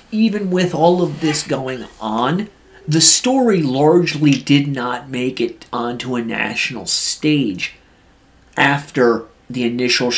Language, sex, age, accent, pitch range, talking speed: English, male, 30-49, American, 125-170 Hz, 125 wpm